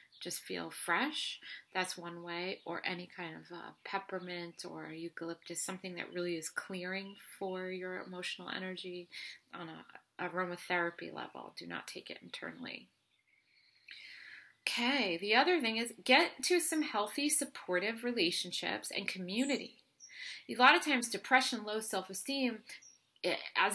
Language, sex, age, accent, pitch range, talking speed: English, female, 30-49, American, 170-220 Hz, 135 wpm